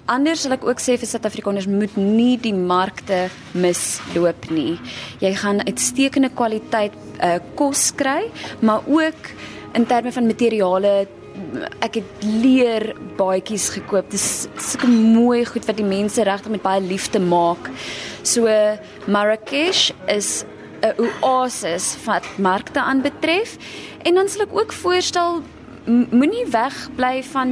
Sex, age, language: female, 20-39, English